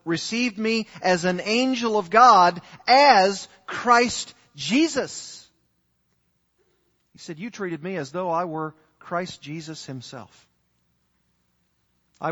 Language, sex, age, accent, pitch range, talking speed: English, male, 50-69, American, 140-190 Hz, 110 wpm